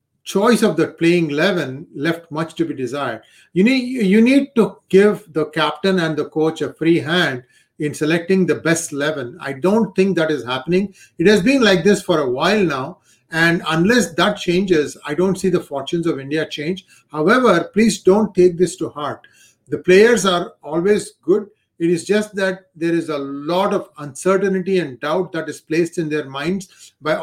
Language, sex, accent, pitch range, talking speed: English, male, Indian, 155-190 Hz, 190 wpm